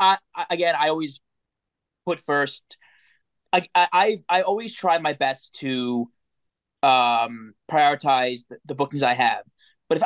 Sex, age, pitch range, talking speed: male, 20-39, 130-175 Hz, 135 wpm